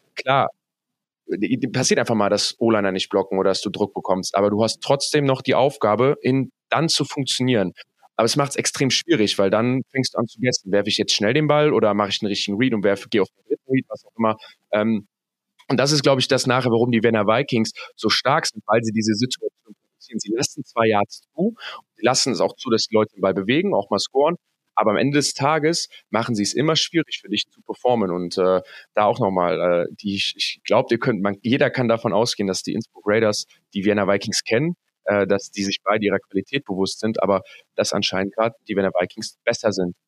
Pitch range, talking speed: 100-125 Hz, 225 wpm